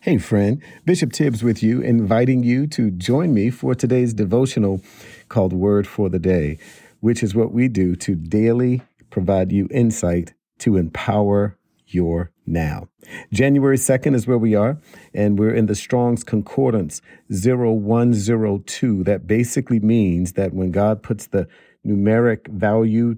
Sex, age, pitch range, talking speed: male, 50-69, 95-125 Hz, 145 wpm